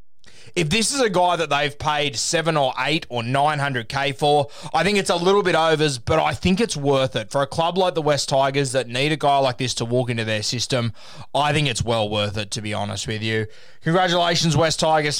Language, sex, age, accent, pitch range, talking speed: English, male, 20-39, Australian, 125-155 Hz, 235 wpm